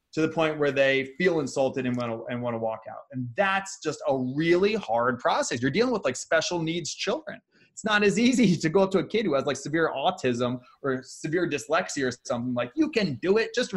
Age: 20-39